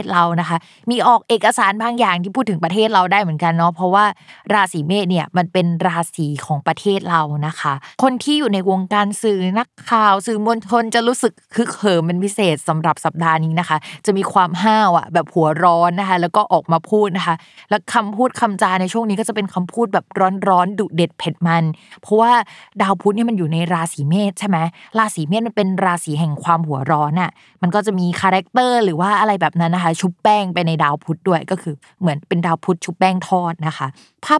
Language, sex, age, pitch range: Thai, female, 20-39, 165-215 Hz